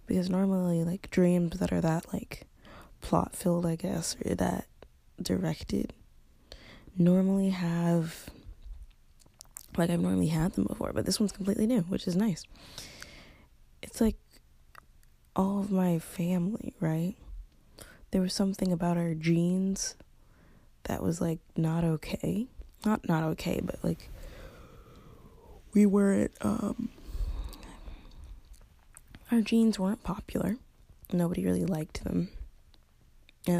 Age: 20-39